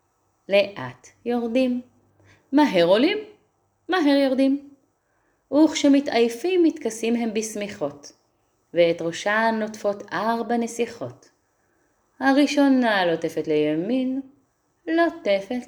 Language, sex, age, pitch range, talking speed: Hebrew, female, 30-49, 160-235 Hz, 75 wpm